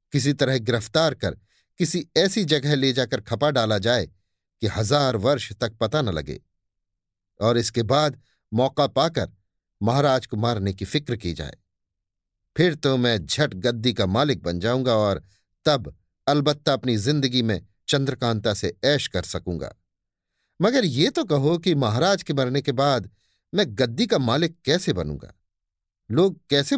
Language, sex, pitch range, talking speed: Hindi, male, 95-140 Hz, 150 wpm